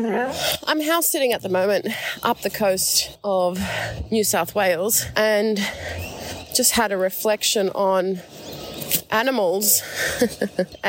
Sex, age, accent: female, 30-49, Australian